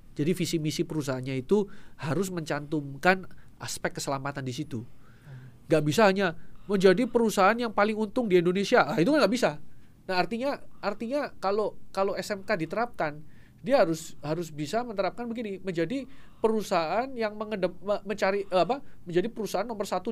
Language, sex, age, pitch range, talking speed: Indonesian, male, 30-49, 155-220 Hz, 145 wpm